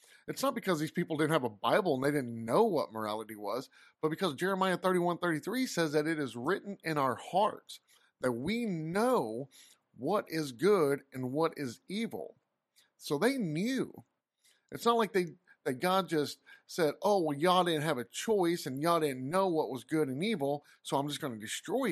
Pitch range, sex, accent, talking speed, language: 135-185 Hz, male, American, 195 wpm, English